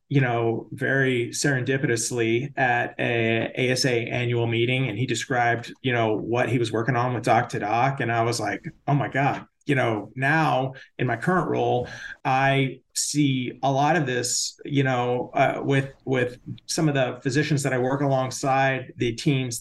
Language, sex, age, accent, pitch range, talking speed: English, male, 30-49, American, 125-150 Hz, 175 wpm